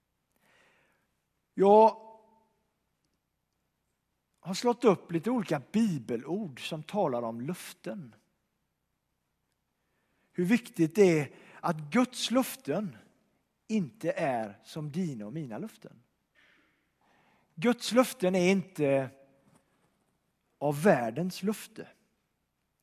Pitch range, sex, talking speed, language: 155-205 Hz, male, 85 wpm, Swedish